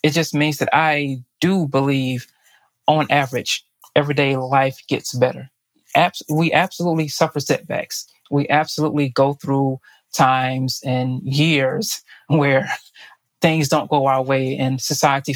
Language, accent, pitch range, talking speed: English, American, 130-150 Hz, 125 wpm